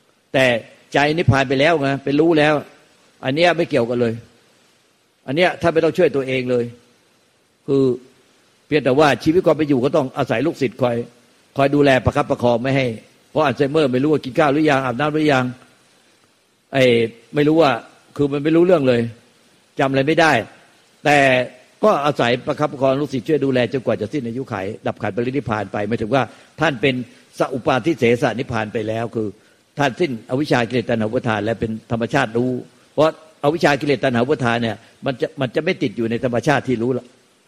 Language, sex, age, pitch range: Thai, male, 60-79, 120-150 Hz